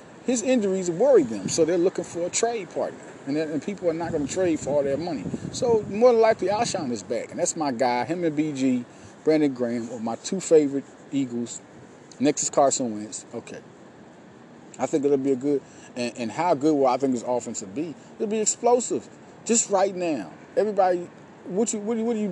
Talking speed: 210 wpm